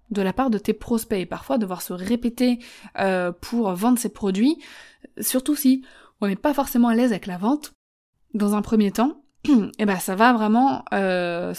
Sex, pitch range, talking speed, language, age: female, 205-260 Hz, 190 wpm, French, 20-39